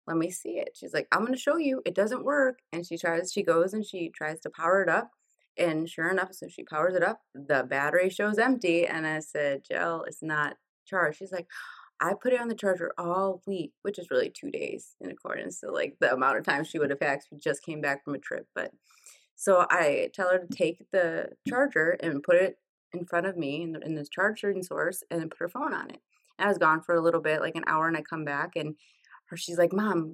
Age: 20-39